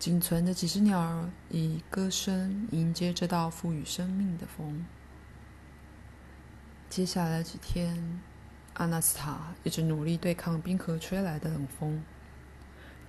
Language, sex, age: Chinese, female, 20-39